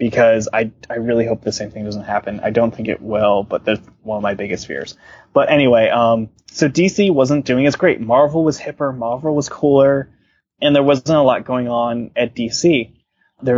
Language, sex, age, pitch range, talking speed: English, male, 20-39, 110-125 Hz, 210 wpm